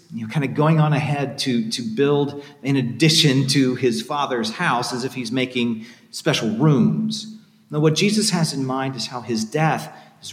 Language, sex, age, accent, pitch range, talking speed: English, male, 40-59, American, 130-195 Hz, 190 wpm